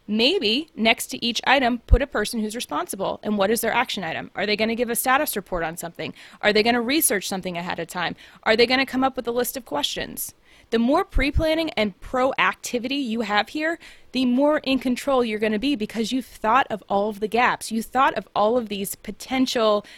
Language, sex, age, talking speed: English, female, 20-39, 230 wpm